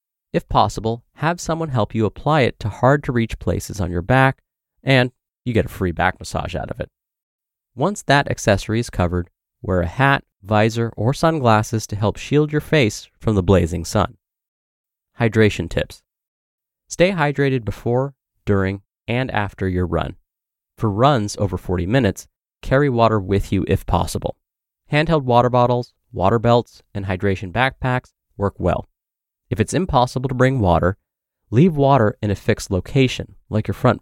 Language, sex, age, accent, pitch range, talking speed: English, male, 30-49, American, 95-130 Hz, 160 wpm